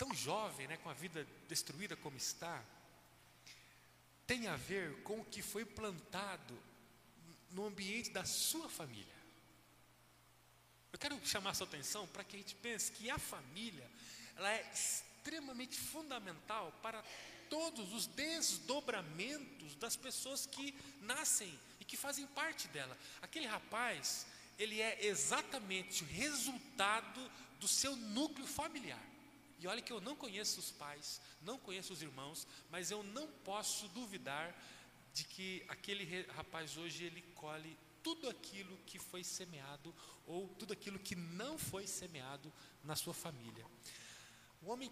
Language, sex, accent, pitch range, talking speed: Portuguese, male, Brazilian, 155-225 Hz, 140 wpm